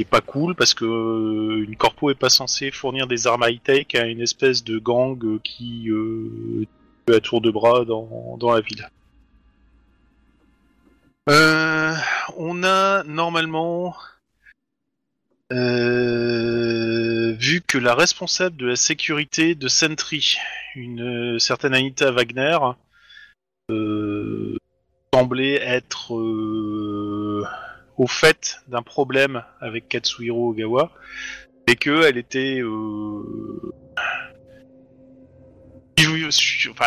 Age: 30-49